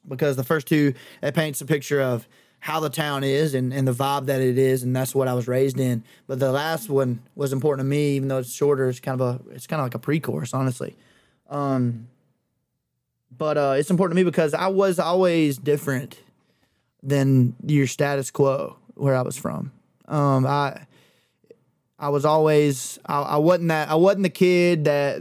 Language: English